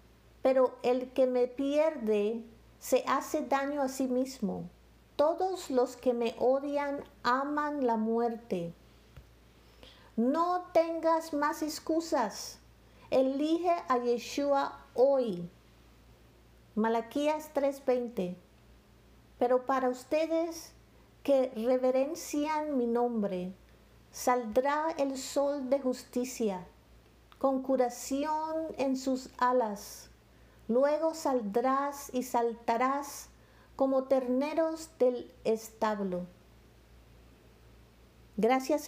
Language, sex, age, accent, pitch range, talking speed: English, female, 50-69, American, 215-280 Hz, 85 wpm